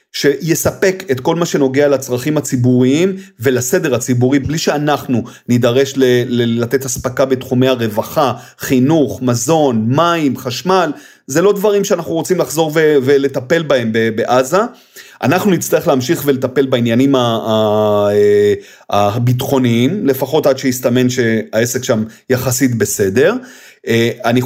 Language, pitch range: Hebrew, 125-150 Hz